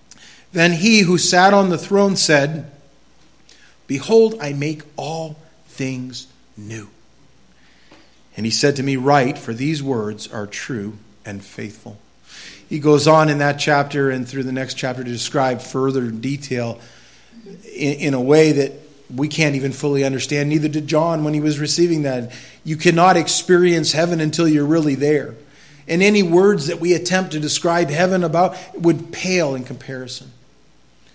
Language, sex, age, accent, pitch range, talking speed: English, male, 40-59, American, 130-155 Hz, 160 wpm